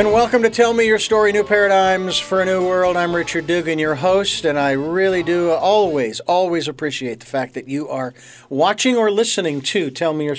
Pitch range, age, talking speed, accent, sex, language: 150-195 Hz, 50-69, 215 wpm, American, male, English